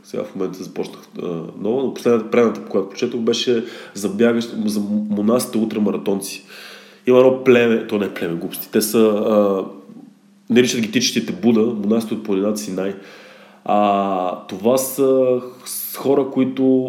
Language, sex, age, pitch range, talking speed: Bulgarian, male, 20-39, 105-125 Hz, 150 wpm